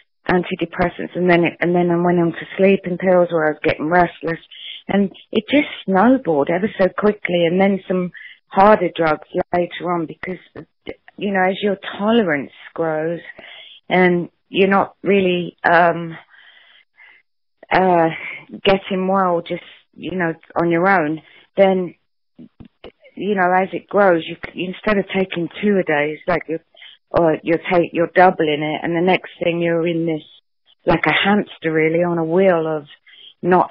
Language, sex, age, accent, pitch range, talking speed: English, female, 30-49, British, 165-190 Hz, 160 wpm